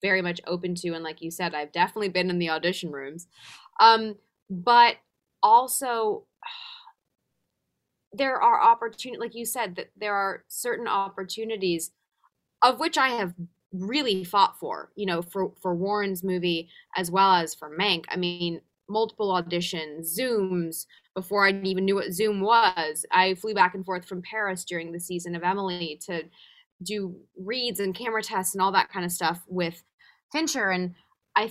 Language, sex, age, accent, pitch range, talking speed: English, female, 20-39, American, 170-205 Hz, 165 wpm